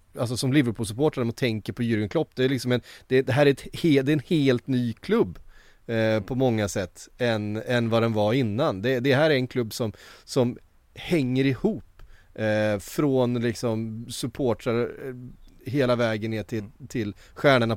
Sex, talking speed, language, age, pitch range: male, 180 wpm, Swedish, 30-49, 110-135 Hz